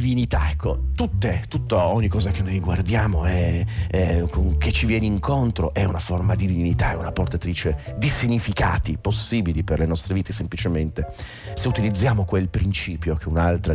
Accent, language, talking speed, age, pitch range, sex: native, Italian, 160 wpm, 40-59, 85-105 Hz, male